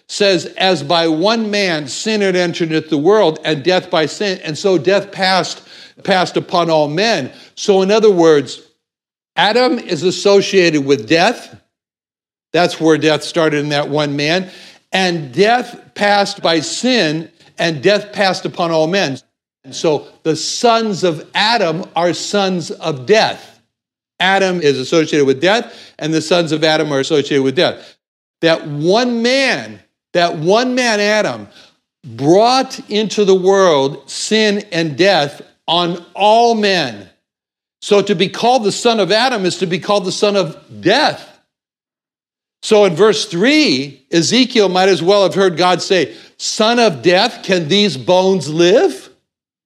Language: English